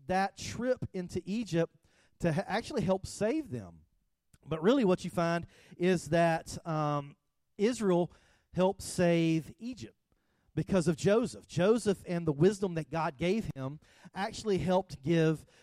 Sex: male